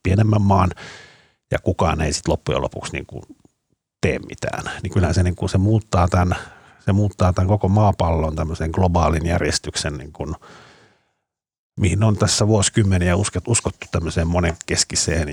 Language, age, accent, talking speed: Finnish, 50-69, native, 125 wpm